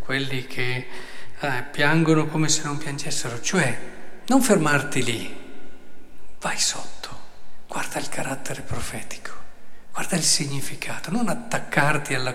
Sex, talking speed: male, 115 wpm